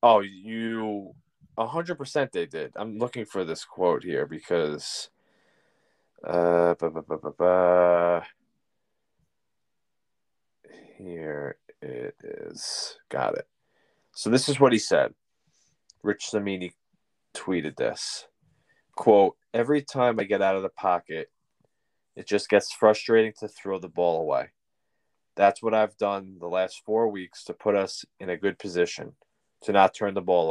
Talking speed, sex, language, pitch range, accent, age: 140 wpm, male, English, 95-120 Hz, American, 20-39